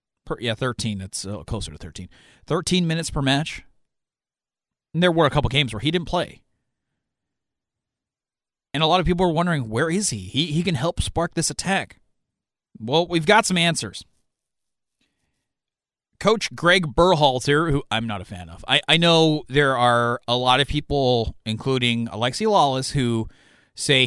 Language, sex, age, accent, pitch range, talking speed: English, male, 30-49, American, 115-155 Hz, 160 wpm